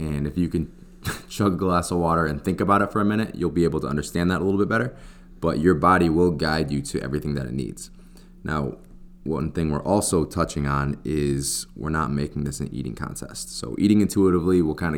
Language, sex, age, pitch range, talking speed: English, male, 20-39, 75-90 Hz, 230 wpm